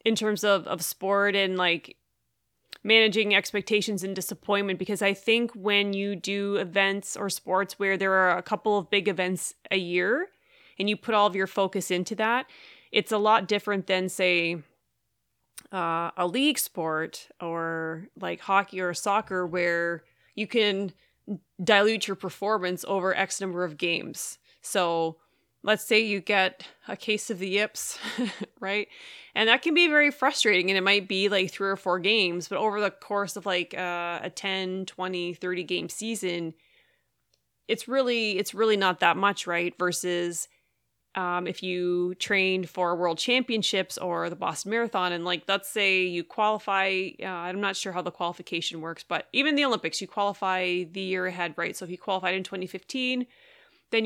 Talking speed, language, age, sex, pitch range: 170 wpm, English, 20-39, female, 180-210 Hz